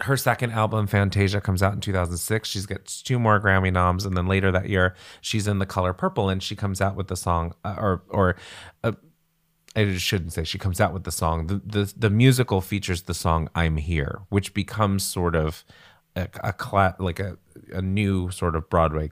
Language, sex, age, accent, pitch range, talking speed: English, male, 30-49, American, 85-110 Hz, 205 wpm